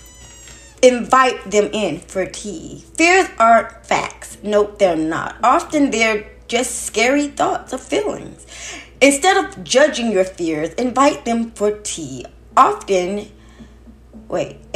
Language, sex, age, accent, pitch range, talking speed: English, female, 20-39, American, 190-255 Hz, 120 wpm